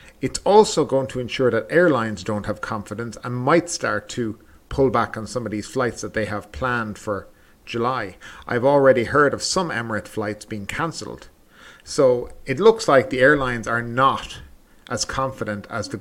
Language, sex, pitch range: English, male, 105-140 Hz